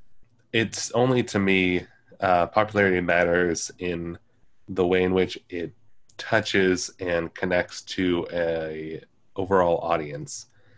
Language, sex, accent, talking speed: English, male, American, 110 wpm